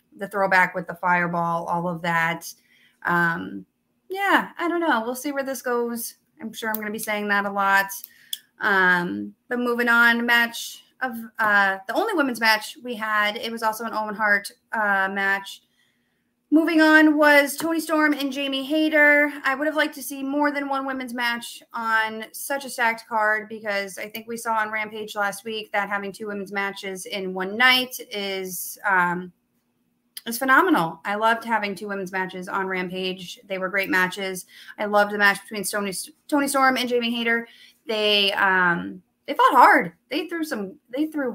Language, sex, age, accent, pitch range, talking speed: English, female, 30-49, American, 185-245 Hz, 185 wpm